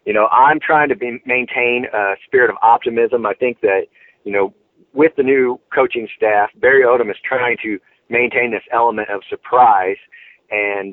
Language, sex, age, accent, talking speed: English, male, 40-59, American, 175 wpm